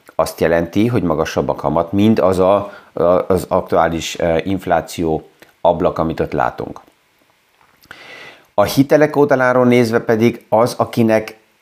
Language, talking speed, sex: Hungarian, 120 wpm, male